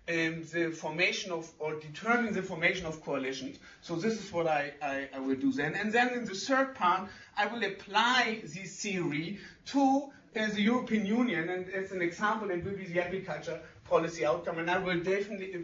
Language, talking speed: English, 190 wpm